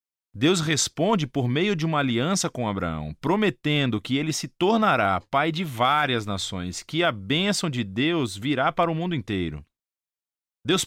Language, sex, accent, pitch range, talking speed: Portuguese, male, Brazilian, 105-170 Hz, 160 wpm